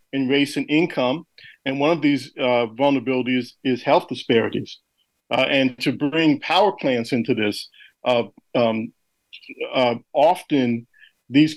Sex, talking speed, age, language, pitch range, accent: male, 135 wpm, 50-69, English, 120-145 Hz, American